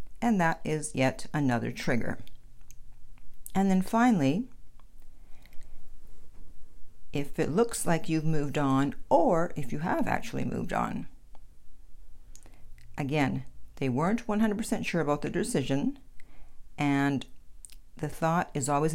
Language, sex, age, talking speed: English, female, 50-69, 115 wpm